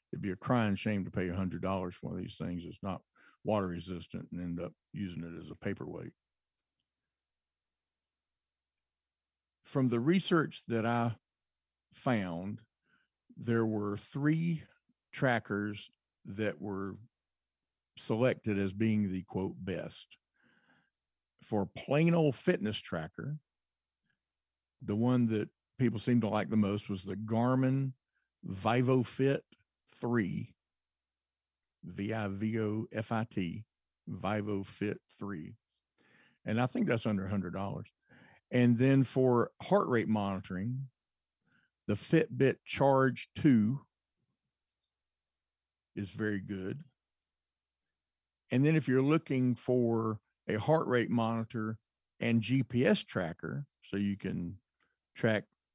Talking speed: 115 wpm